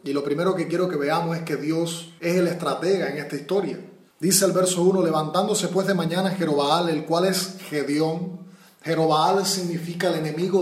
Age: 30-49